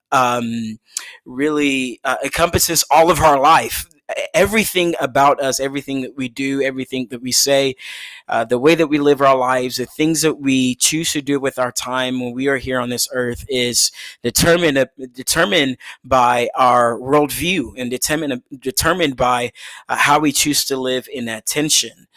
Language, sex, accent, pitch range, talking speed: English, male, American, 125-145 Hz, 175 wpm